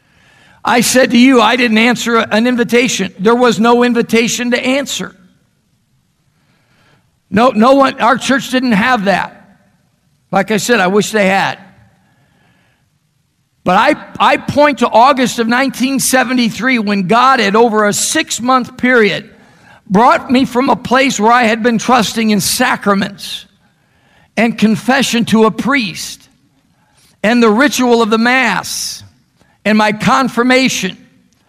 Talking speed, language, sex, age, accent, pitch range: 135 wpm, English, male, 50-69, American, 195-250 Hz